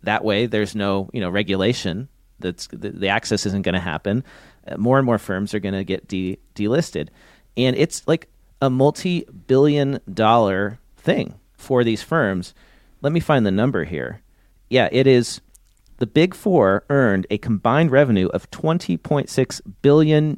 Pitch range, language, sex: 100-135 Hz, English, male